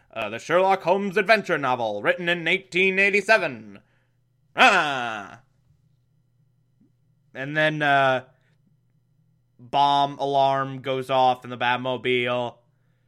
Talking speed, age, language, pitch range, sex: 90 wpm, 20-39, English, 130-165 Hz, male